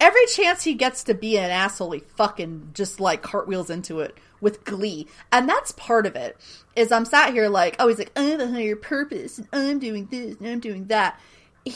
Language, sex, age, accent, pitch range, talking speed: English, female, 30-49, American, 165-225 Hz, 220 wpm